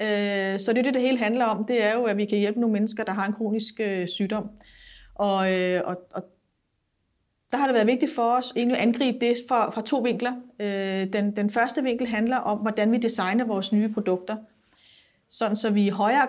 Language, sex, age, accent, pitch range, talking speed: Danish, female, 30-49, native, 195-230 Hz, 215 wpm